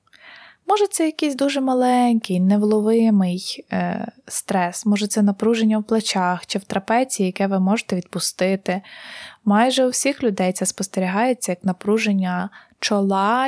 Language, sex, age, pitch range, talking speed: Ukrainian, female, 20-39, 195-245 Hz, 130 wpm